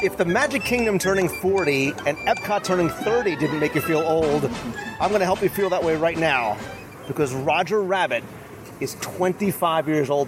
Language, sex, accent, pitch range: English, male, American, 150-210 Hz